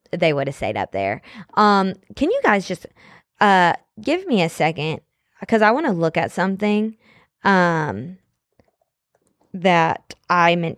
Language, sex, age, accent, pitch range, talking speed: English, female, 20-39, American, 165-220 Hz, 150 wpm